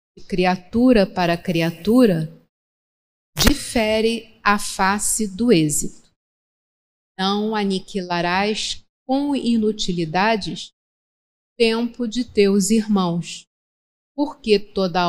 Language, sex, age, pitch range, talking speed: Portuguese, female, 40-59, 185-245 Hz, 70 wpm